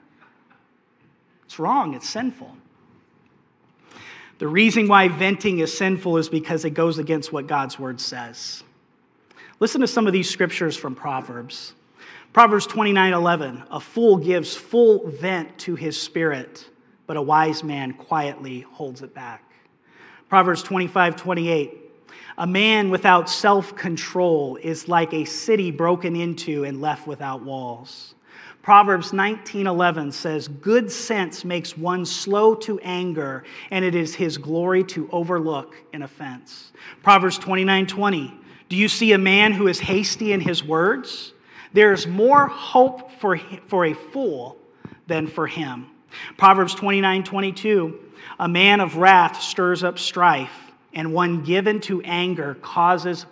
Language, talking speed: English, 135 wpm